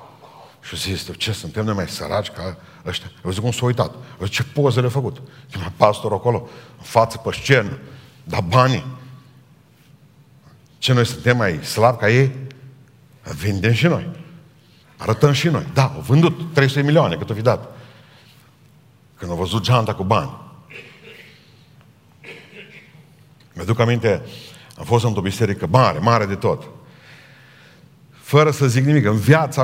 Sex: male